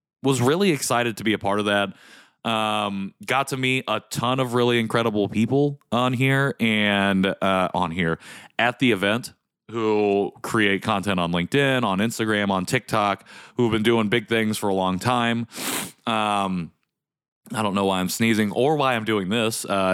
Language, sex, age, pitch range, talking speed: English, male, 20-39, 100-120 Hz, 180 wpm